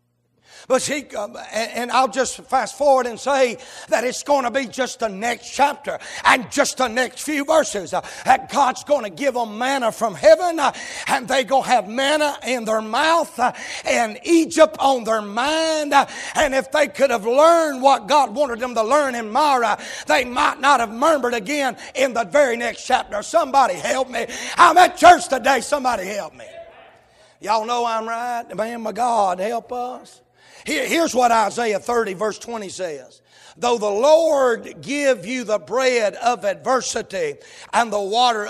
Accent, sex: American, male